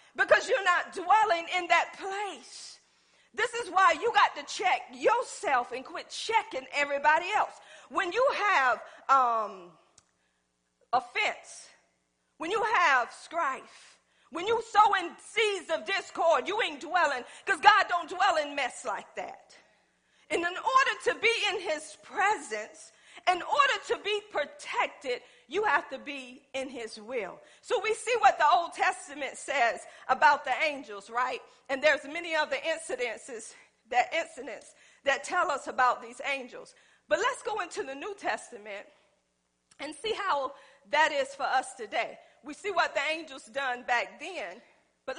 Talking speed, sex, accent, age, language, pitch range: 155 wpm, female, American, 40-59, English, 265-390 Hz